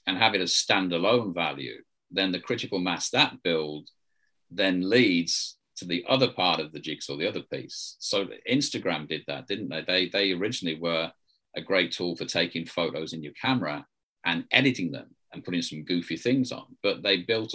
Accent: British